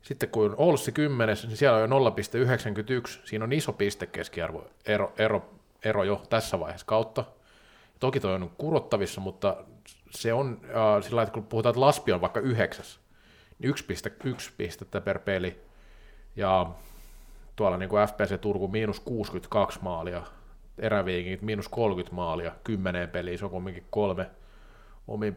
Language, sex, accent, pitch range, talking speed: Finnish, male, native, 100-130 Hz, 150 wpm